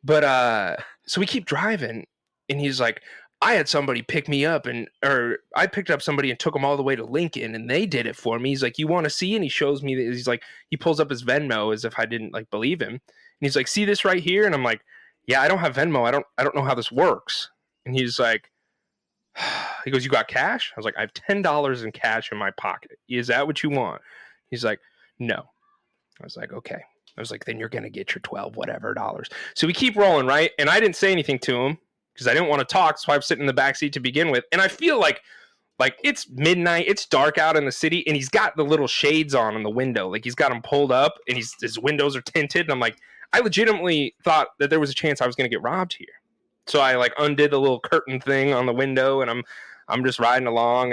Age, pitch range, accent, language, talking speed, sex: 20-39, 125-165 Hz, American, English, 265 wpm, male